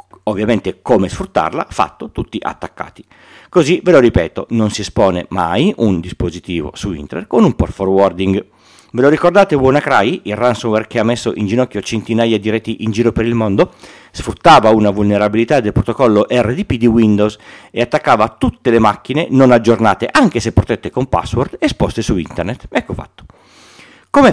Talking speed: 165 wpm